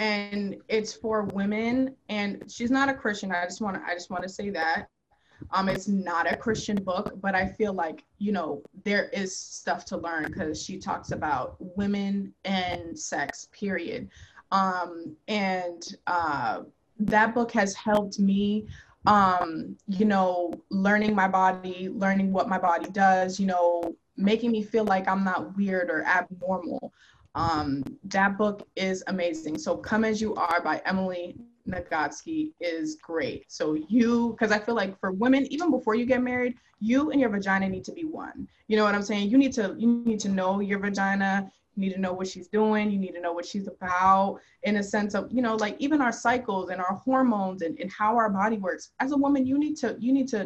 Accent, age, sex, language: American, 20-39, female, English